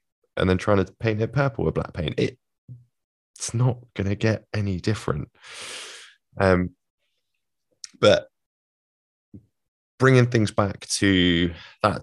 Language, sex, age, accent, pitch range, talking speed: English, male, 20-39, British, 75-100 Hz, 125 wpm